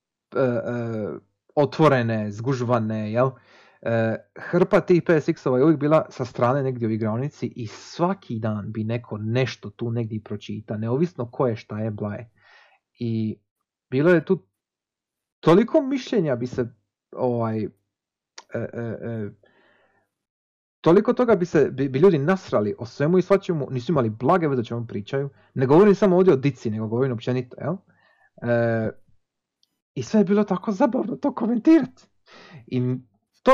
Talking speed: 145 wpm